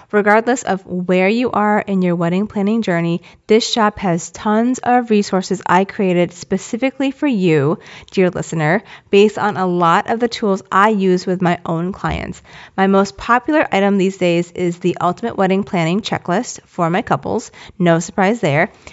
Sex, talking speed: female, 170 wpm